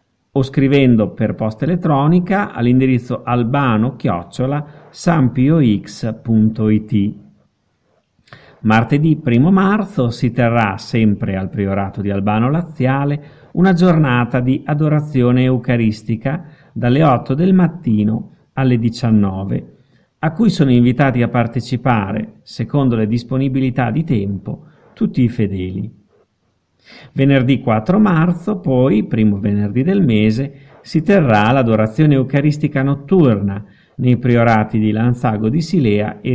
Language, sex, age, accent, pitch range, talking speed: Italian, male, 50-69, native, 110-150 Hz, 105 wpm